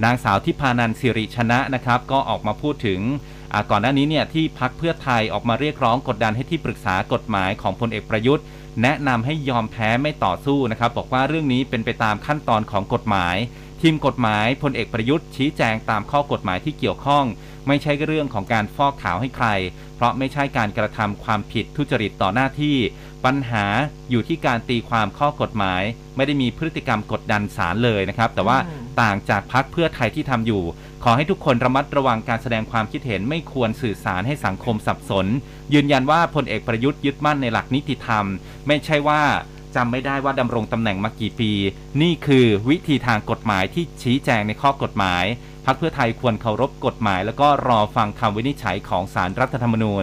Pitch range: 110-145 Hz